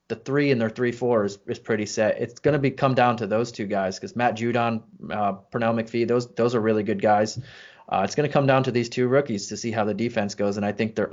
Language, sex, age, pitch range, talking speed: English, male, 20-39, 110-125 Hz, 270 wpm